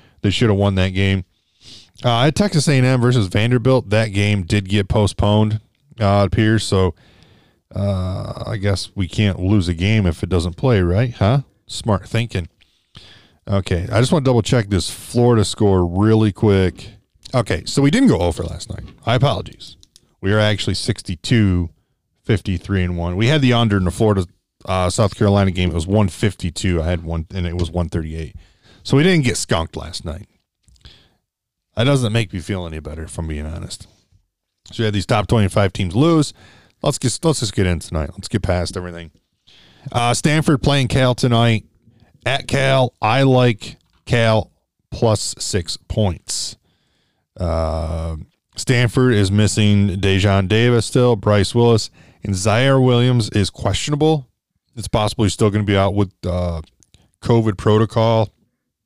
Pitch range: 95-120 Hz